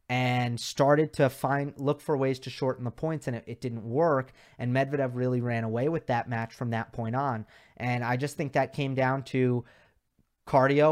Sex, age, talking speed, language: male, 30-49, 205 wpm, English